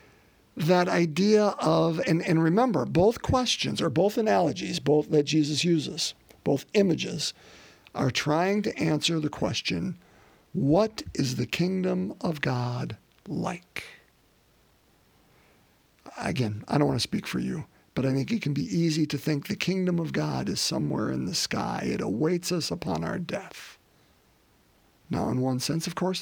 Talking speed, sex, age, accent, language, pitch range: 155 wpm, male, 50-69, American, English, 140-185 Hz